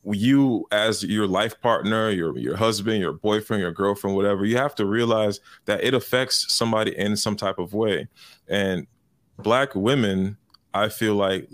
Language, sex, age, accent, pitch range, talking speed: English, male, 20-39, American, 95-110 Hz, 165 wpm